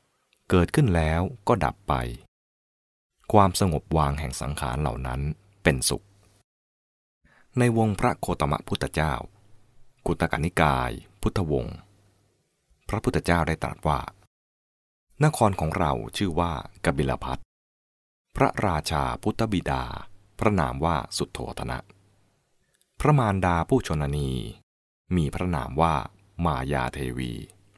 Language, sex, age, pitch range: English, male, 20-39, 70-100 Hz